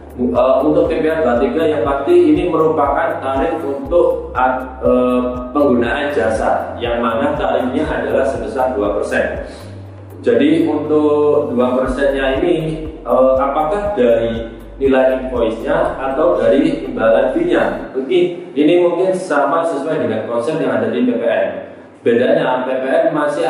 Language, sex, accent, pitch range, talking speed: Indonesian, male, native, 125-155 Hz, 105 wpm